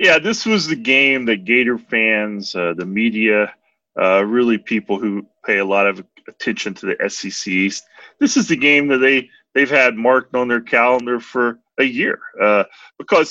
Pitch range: 110-140 Hz